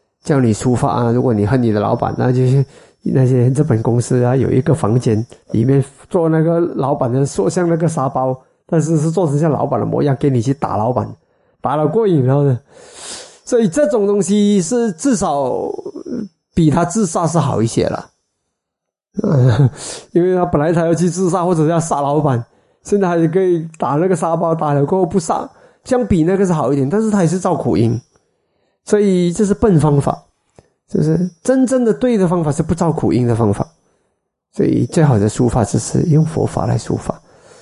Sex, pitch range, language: male, 125-175 Hz, Chinese